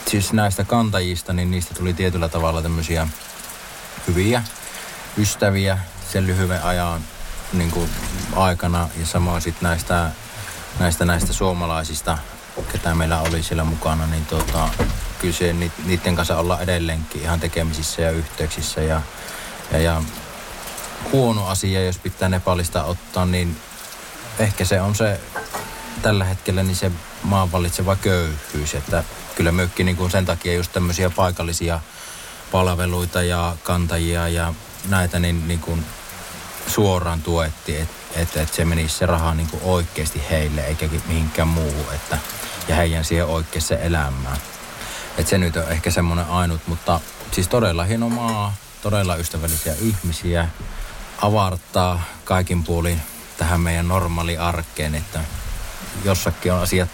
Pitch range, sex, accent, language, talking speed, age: 80-95 Hz, male, native, Finnish, 125 wpm, 30-49